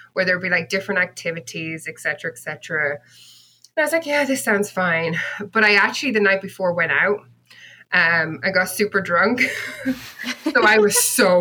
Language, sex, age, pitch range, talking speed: English, female, 20-39, 165-205 Hz, 185 wpm